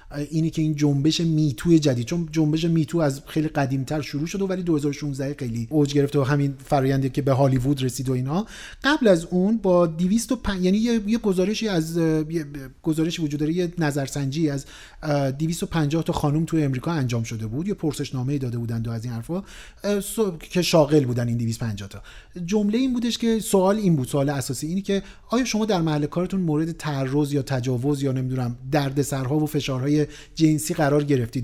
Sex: male